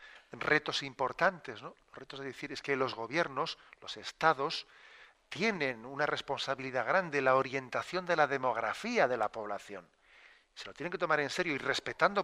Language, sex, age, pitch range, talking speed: Spanish, male, 40-59, 125-145 Hz, 165 wpm